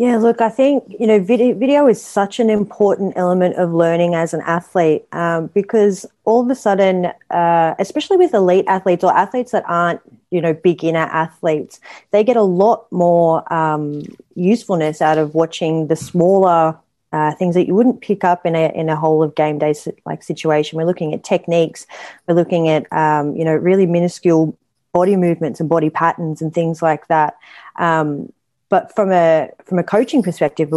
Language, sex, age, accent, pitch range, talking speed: English, female, 30-49, Australian, 155-180 Hz, 185 wpm